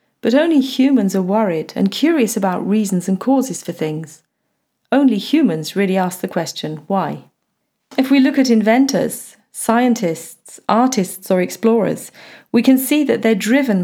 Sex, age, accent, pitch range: female, 40-59, British, 185-235 Hz